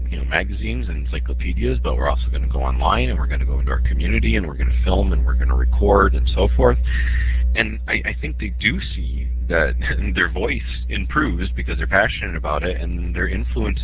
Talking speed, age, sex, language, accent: 215 wpm, 40-59, male, English, American